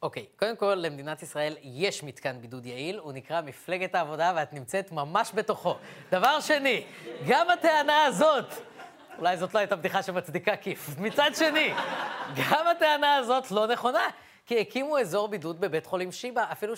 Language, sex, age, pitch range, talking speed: Hebrew, female, 20-39, 175-225 Hz, 160 wpm